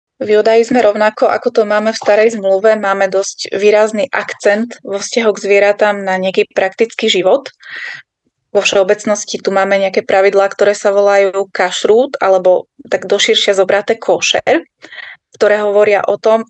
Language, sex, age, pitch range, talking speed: Slovak, female, 20-39, 195-215 Hz, 145 wpm